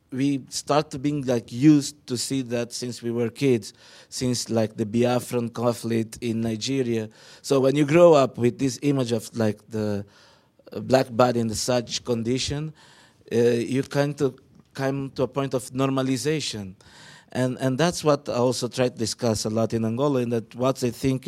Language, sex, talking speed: English, male, 180 wpm